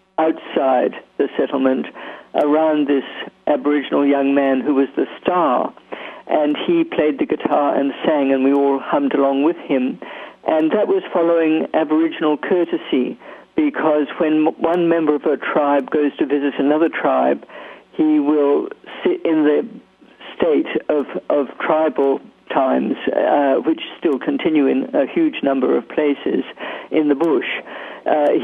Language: English